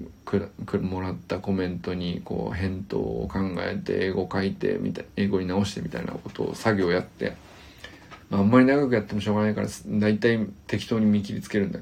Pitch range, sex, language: 95-120 Hz, male, Japanese